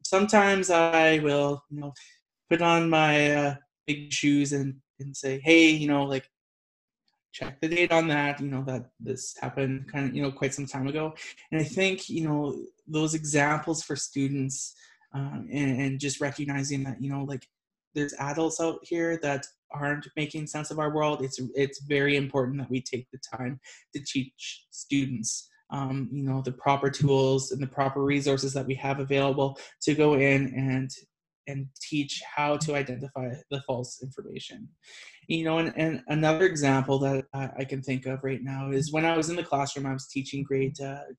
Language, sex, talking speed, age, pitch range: English, male, 185 wpm, 20-39, 135-150 Hz